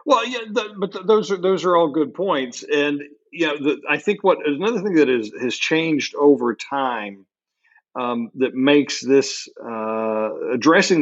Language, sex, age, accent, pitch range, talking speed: English, male, 50-69, American, 115-145 Hz, 180 wpm